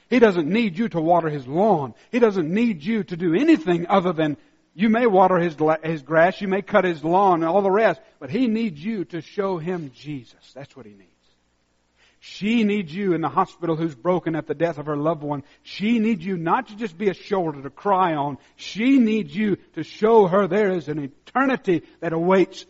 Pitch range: 145-205 Hz